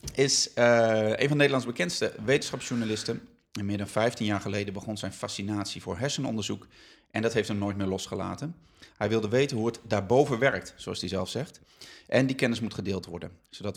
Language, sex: Dutch, male